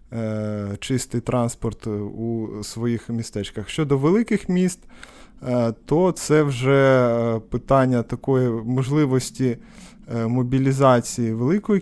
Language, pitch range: Ukrainian, 115-135 Hz